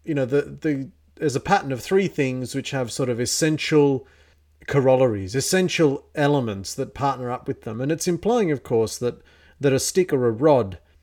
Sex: male